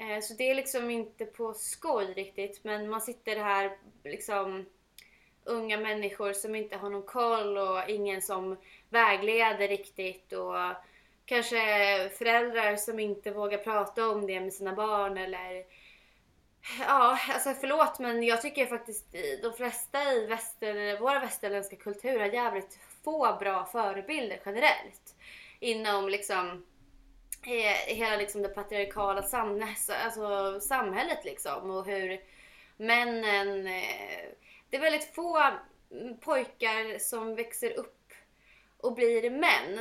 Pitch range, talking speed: 195-235 Hz, 125 wpm